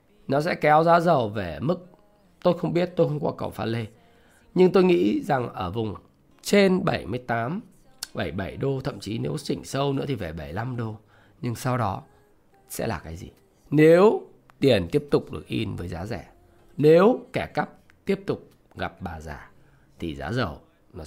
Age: 20-39